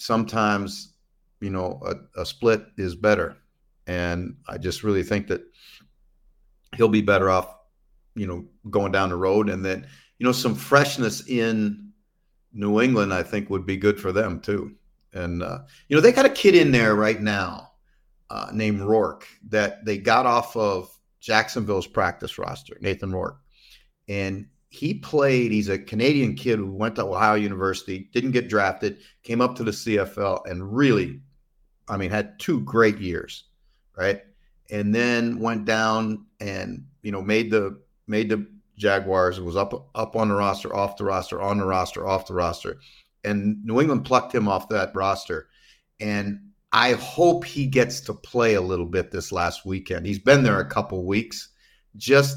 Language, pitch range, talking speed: English, 95-120 Hz, 170 wpm